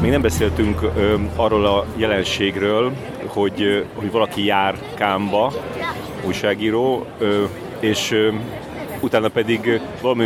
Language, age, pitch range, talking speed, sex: Hungarian, 30-49, 100-115 Hz, 115 wpm, male